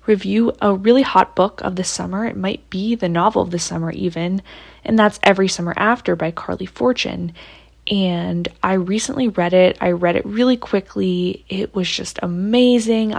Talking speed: 175 wpm